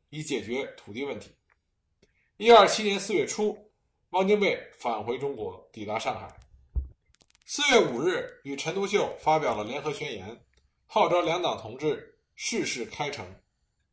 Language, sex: Chinese, male